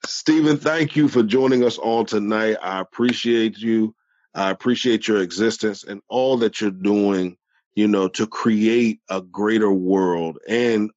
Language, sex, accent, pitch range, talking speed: English, male, American, 95-115 Hz, 155 wpm